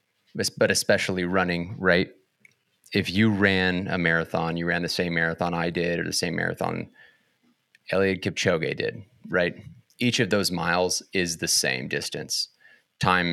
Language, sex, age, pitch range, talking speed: English, male, 30-49, 85-100 Hz, 150 wpm